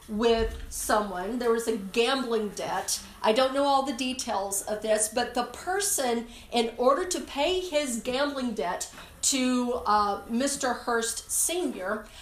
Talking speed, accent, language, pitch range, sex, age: 145 wpm, American, English, 220-275 Hz, female, 40-59